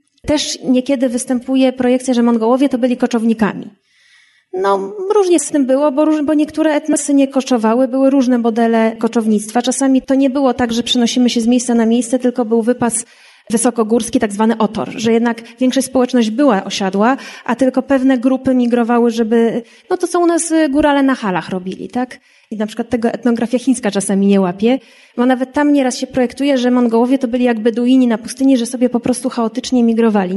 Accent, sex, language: native, female, Polish